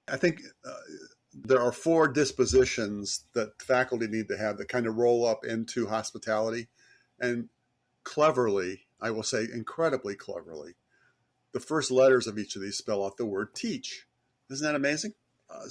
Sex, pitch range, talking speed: male, 115-135 Hz, 160 wpm